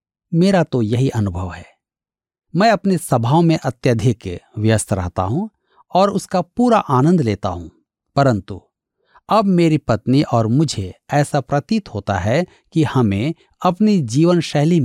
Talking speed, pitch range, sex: 135 wpm, 110-170 Hz, male